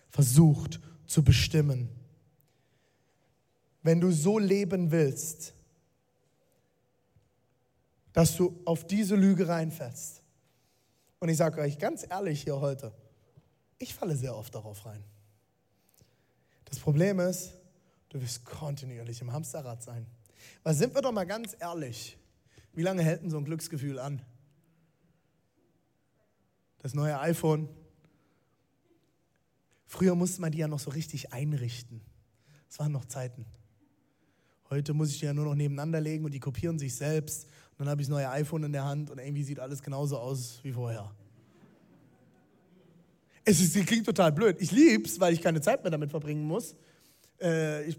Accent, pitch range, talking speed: German, 135-170 Hz, 145 wpm